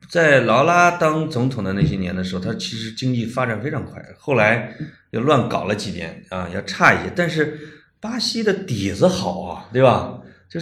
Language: Chinese